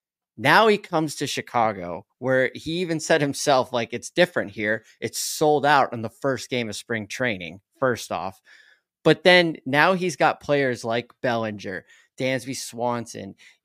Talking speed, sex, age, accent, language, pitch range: 160 wpm, male, 20-39, American, English, 115-140 Hz